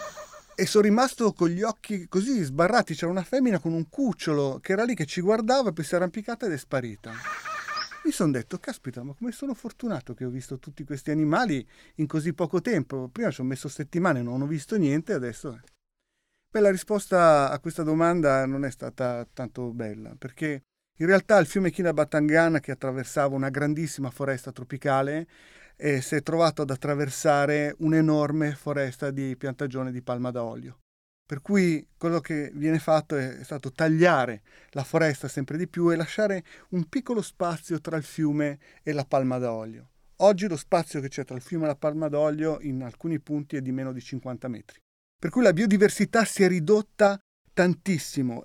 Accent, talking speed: native, 180 wpm